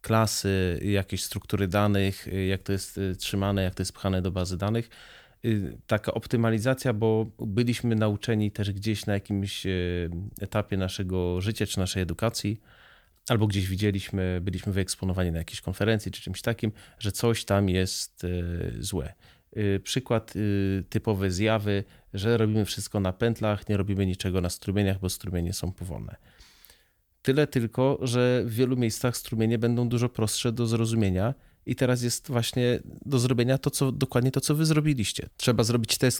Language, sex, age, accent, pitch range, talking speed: Polish, male, 30-49, native, 95-115 Hz, 150 wpm